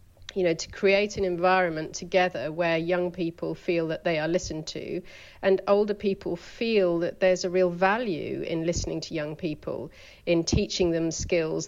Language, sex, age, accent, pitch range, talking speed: English, female, 40-59, British, 165-190 Hz, 175 wpm